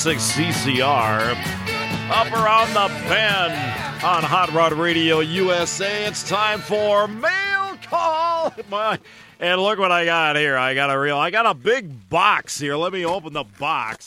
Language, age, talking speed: English, 50-69, 155 wpm